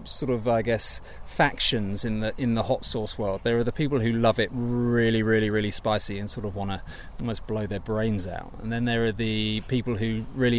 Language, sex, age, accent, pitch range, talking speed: English, male, 20-39, British, 105-130 Hz, 230 wpm